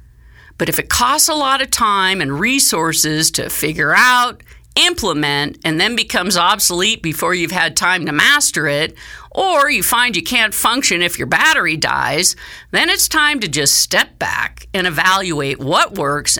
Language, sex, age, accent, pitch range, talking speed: English, female, 50-69, American, 150-245 Hz, 170 wpm